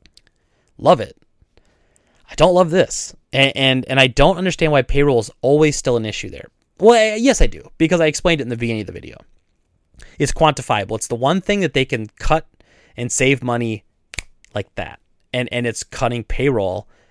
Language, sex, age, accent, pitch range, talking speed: English, male, 30-49, American, 105-160 Hz, 190 wpm